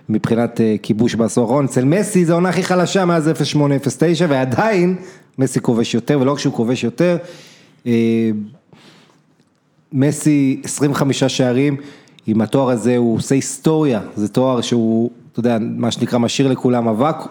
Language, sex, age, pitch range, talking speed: Hebrew, male, 30-49, 125-155 Hz, 140 wpm